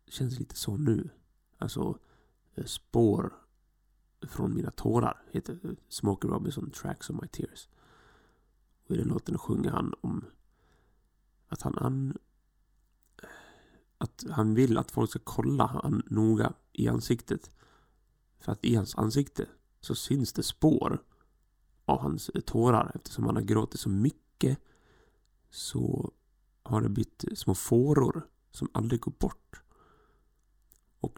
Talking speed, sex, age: 125 wpm, male, 30-49